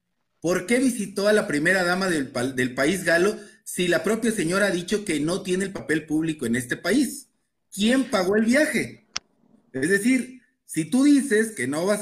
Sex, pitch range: male, 150-210 Hz